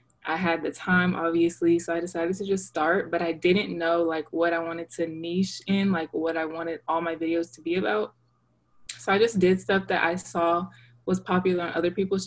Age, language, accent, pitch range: 20-39, English, American, 165-185 Hz